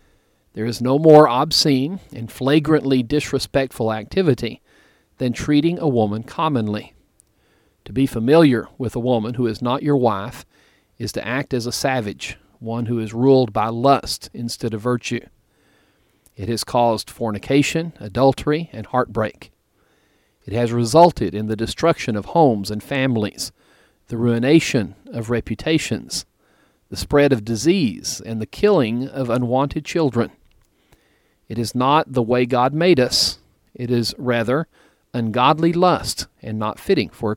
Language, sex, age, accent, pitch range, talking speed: English, male, 40-59, American, 115-145 Hz, 145 wpm